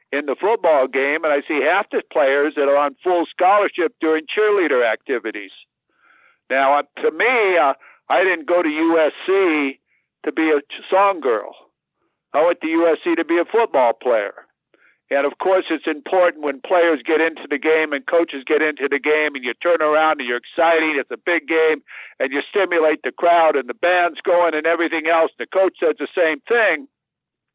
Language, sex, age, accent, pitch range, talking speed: English, male, 60-79, American, 155-205 Hz, 190 wpm